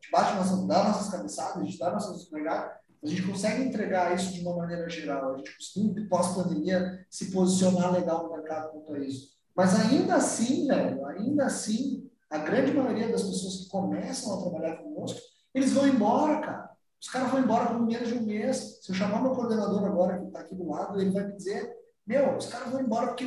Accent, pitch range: Brazilian, 175-245 Hz